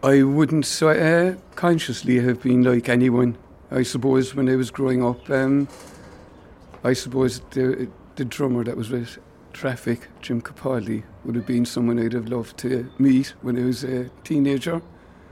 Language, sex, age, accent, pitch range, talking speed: English, male, 50-69, British, 115-135 Hz, 160 wpm